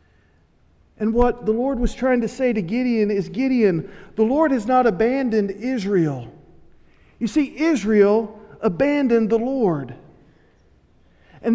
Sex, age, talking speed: male, 40-59, 130 wpm